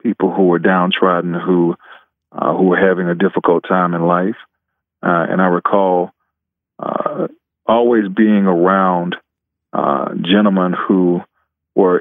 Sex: male